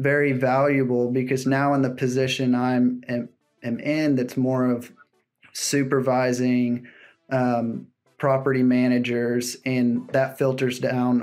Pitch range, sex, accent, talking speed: 125-135 Hz, male, American, 120 wpm